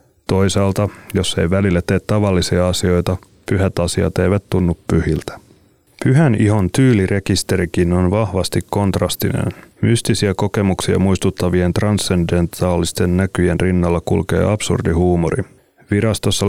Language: Finnish